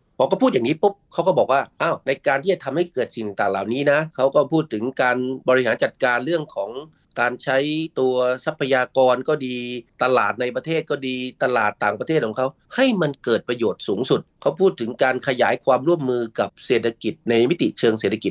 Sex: male